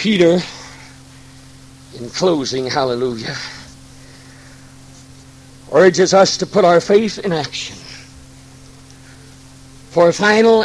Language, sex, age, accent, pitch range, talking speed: English, male, 60-79, American, 130-185 Hz, 85 wpm